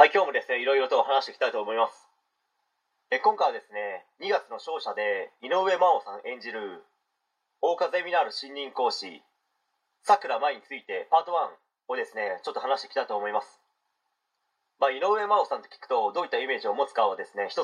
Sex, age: male, 30-49